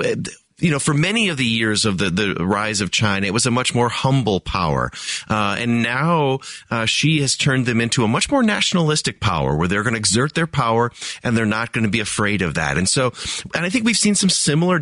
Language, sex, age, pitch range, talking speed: English, male, 40-59, 110-150 Hz, 240 wpm